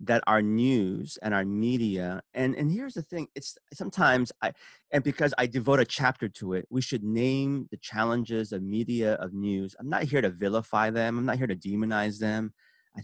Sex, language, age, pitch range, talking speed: male, English, 30-49, 105-135 Hz, 200 wpm